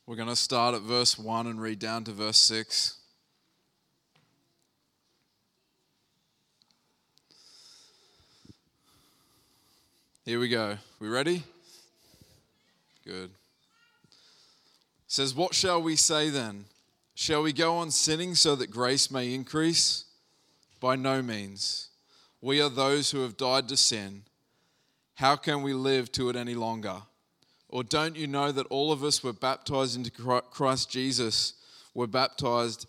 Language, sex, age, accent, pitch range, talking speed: English, male, 20-39, Australian, 115-140 Hz, 125 wpm